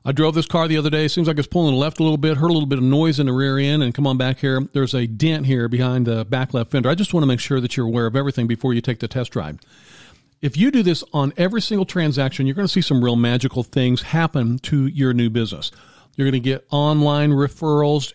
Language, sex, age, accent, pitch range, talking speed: English, male, 50-69, American, 130-155 Hz, 275 wpm